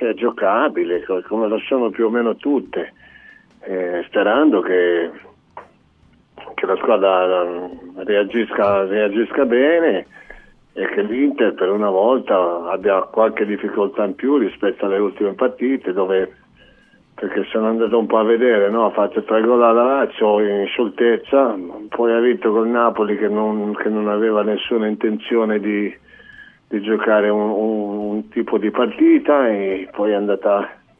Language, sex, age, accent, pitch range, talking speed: Italian, male, 50-69, native, 105-115 Hz, 145 wpm